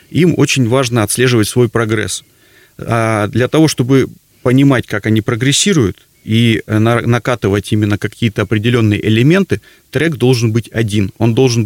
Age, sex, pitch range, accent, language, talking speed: 30-49, male, 105-130 Hz, native, Russian, 130 wpm